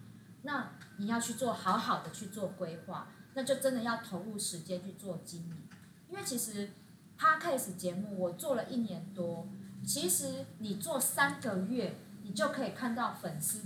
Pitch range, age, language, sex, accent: 180-245 Hz, 30-49, Chinese, female, American